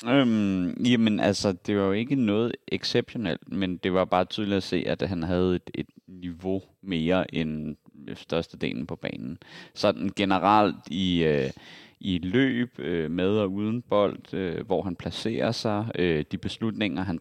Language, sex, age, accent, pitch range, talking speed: Danish, male, 30-49, native, 85-105 Hz, 165 wpm